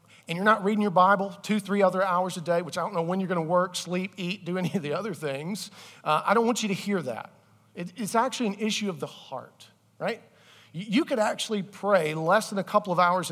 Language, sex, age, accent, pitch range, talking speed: English, male, 40-59, American, 165-205 Hz, 255 wpm